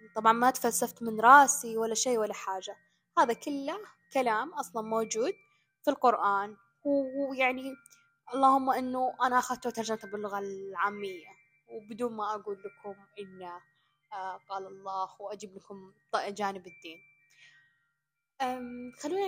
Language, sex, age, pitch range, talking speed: Arabic, female, 10-29, 200-250 Hz, 110 wpm